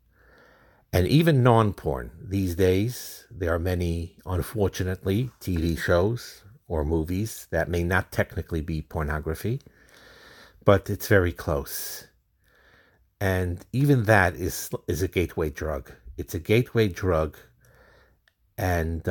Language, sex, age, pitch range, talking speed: English, male, 60-79, 80-100 Hz, 115 wpm